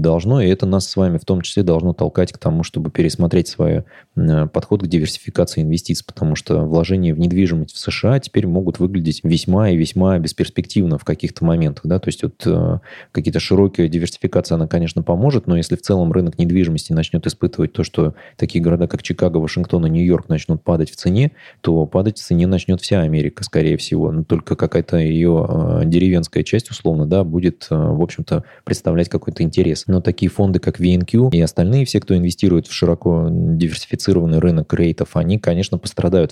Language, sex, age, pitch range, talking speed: Russian, male, 20-39, 80-95 Hz, 185 wpm